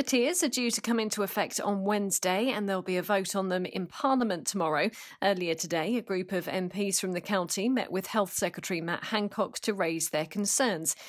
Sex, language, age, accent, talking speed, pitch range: female, English, 40-59, British, 210 wpm, 180-225 Hz